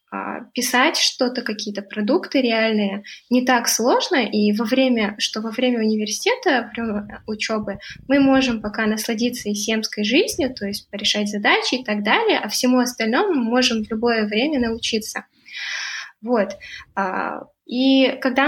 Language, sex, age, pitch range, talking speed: Russian, female, 10-29, 215-265 Hz, 135 wpm